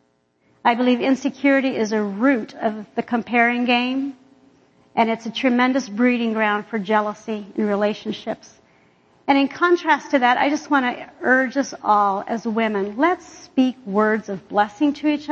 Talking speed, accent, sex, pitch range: 160 wpm, American, female, 210-265 Hz